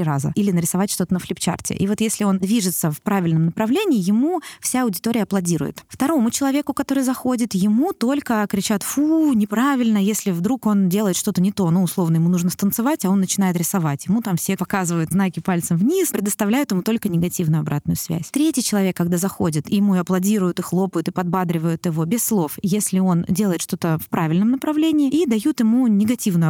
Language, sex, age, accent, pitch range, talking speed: Russian, female, 20-39, native, 180-235 Hz, 185 wpm